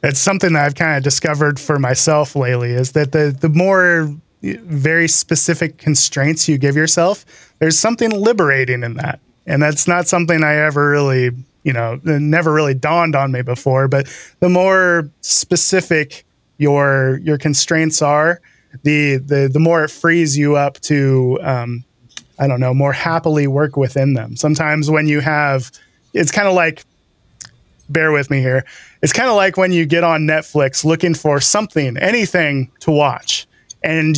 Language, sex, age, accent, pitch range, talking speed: English, male, 20-39, American, 140-165 Hz, 165 wpm